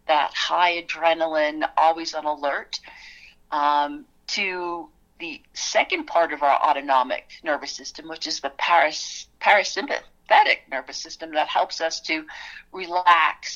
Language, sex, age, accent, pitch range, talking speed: English, female, 50-69, American, 150-210 Hz, 125 wpm